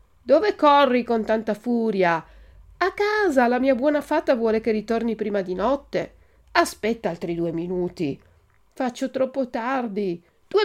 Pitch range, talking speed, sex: 180-260 Hz, 140 wpm, female